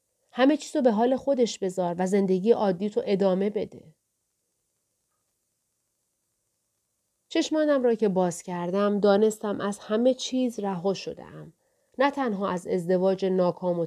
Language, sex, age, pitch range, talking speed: Persian, female, 30-49, 175-240 Hz, 130 wpm